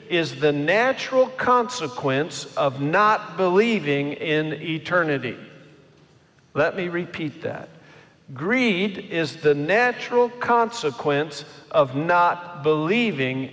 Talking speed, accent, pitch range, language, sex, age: 95 wpm, American, 135-160 Hz, English, male, 50-69